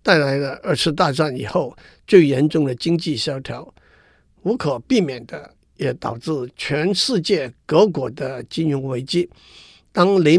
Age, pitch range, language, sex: 50-69, 130-165 Hz, Chinese, male